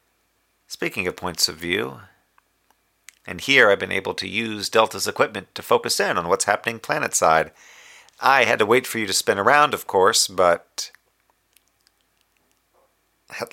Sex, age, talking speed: male, 40-59, 150 wpm